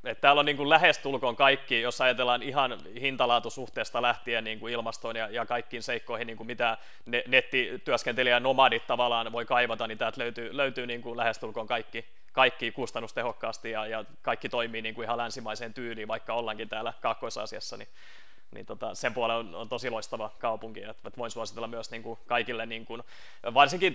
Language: Finnish